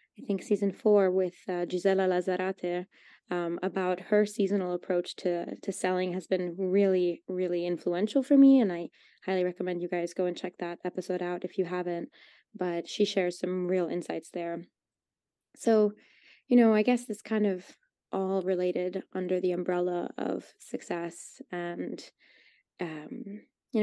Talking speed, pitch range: 155 wpm, 180-205 Hz